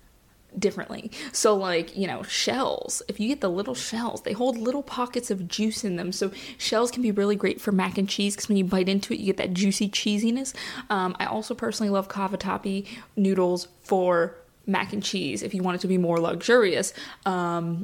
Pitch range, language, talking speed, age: 190-225 Hz, English, 210 wpm, 20-39